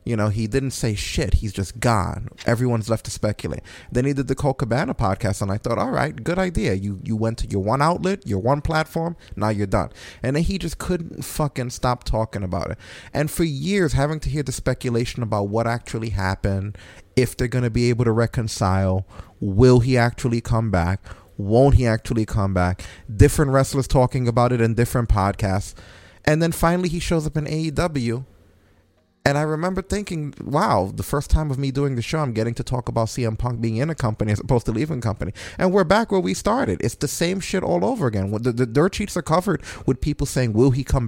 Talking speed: 220 wpm